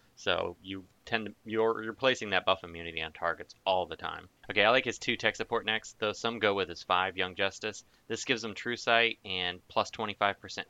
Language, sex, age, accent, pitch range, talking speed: English, male, 20-39, American, 90-110 Hz, 220 wpm